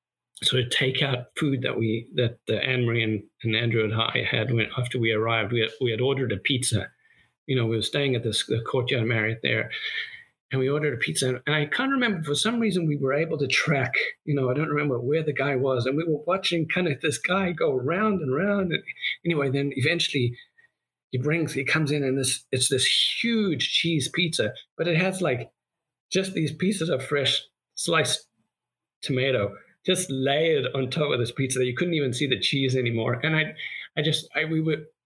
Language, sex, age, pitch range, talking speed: English, male, 50-69, 125-160 Hz, 215 wpm